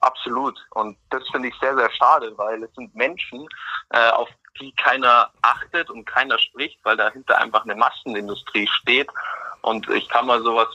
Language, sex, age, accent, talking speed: German, male, 30-49, German, 165 wpm